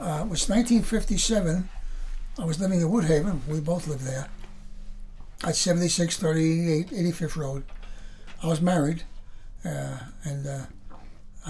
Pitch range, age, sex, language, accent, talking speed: 130-185 Hz, 60-79, male, English, American, 125 wpm